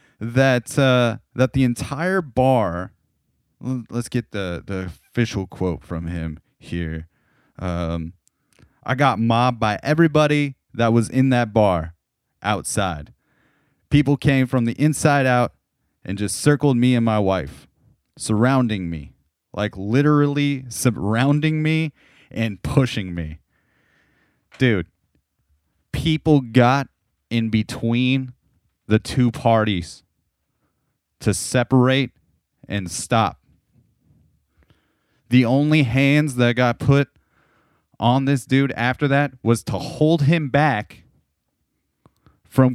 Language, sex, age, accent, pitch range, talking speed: English, male, 30-49, American, 95-135 Hz, 110 wpm